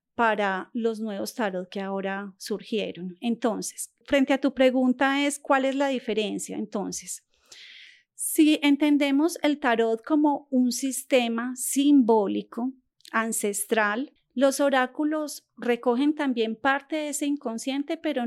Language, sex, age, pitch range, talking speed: Spanish, female, 30-49, 225-280 Hz, 120 wpm